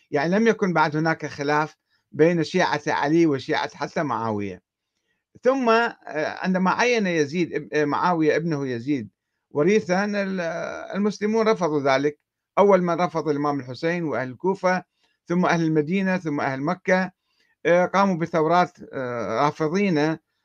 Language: Arabic